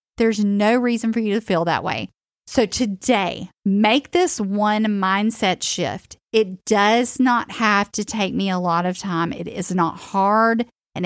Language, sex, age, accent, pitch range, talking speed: English, female, 40-59, American, 185-235 Hz, 175 wpm